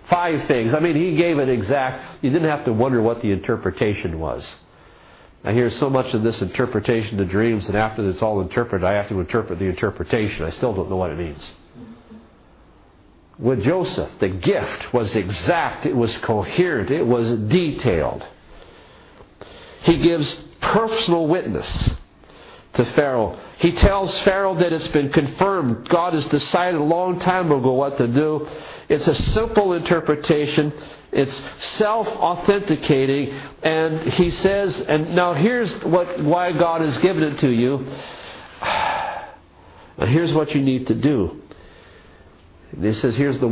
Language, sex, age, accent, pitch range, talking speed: English, male, 50-69, American, 110-165 Hz, 155 wpm